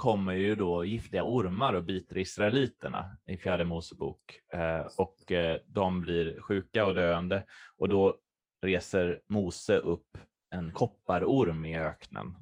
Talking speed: 125 wpm